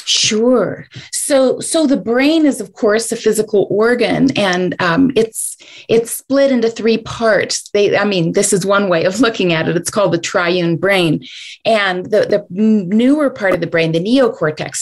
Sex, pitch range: female, 180-235 Hz